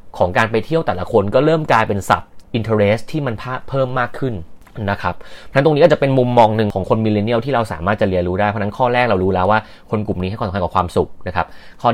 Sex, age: male, 30-49